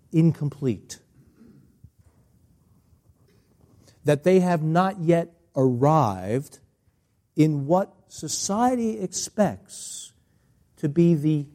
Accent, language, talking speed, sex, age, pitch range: American, English, 75 wpm, male, 60-79, 120-175 Hz